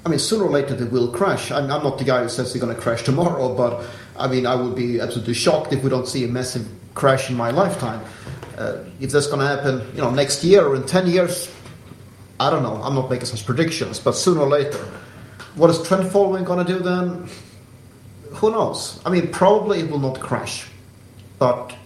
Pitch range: 120-150 Hz